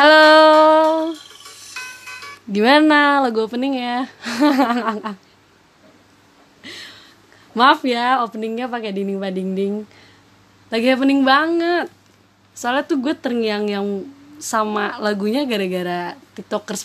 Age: 20-39